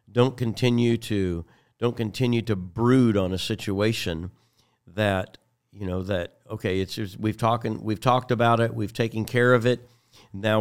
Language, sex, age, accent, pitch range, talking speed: English, male, 50-69, American, 95-115 Hz, 165 wpm